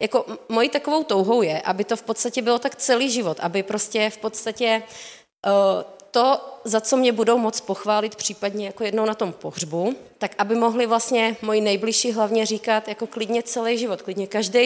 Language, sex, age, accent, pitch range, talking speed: Czech, female, 30-49, native, 200-235 Hz, 180 wpm